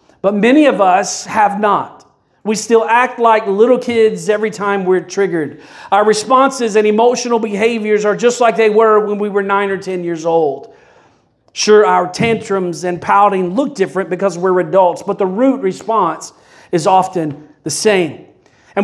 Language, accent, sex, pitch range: English, American, male, 205-250 Hz